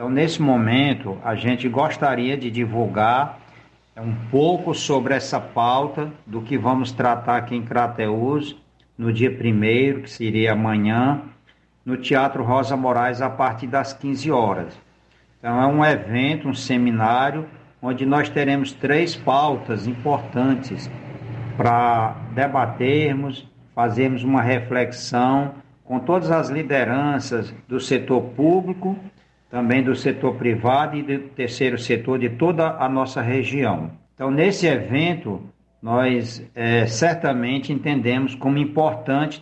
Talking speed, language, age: 120 wpm, Portuguese, 60-79